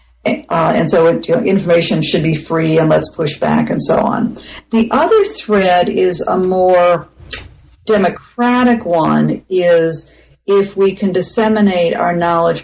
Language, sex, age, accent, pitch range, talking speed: English, female, 50-69, American, 165-215 Hz, 145 wpm